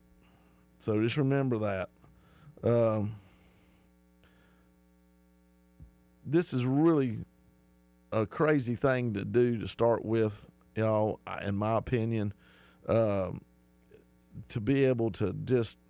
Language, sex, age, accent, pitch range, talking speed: English, male, 50-69, American, 95-125 Hz, 105 wpm